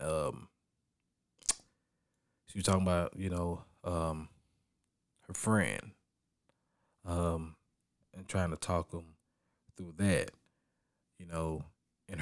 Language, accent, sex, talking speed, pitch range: English, American, male, 105 wpm, 85-100 Hz